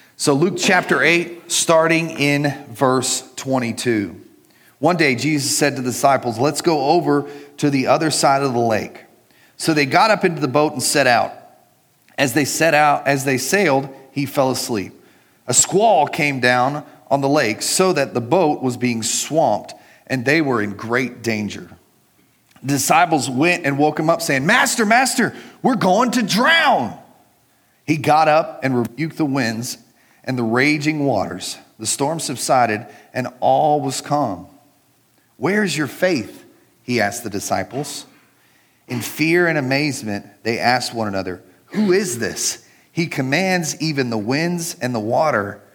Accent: American